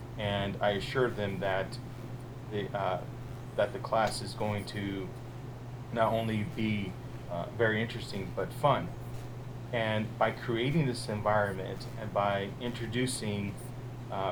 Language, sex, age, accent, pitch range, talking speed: English, male, 30-49, American, 110-125 Hz, 125 wpm